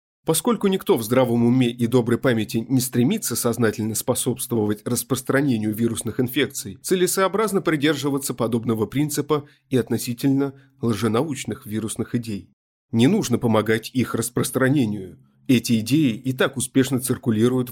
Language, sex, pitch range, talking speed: Russian, male, 115-135 Hz, 120 wpm